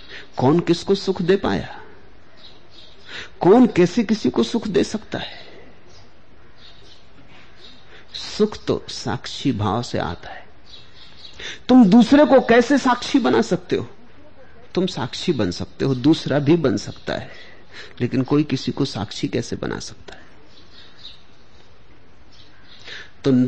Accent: native